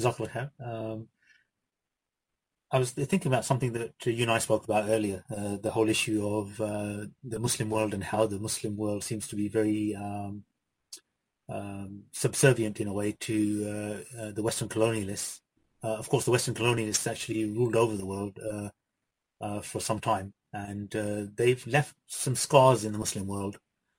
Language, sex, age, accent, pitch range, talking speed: English, male, 30-49, British, 105-120 Hz, 175 wpm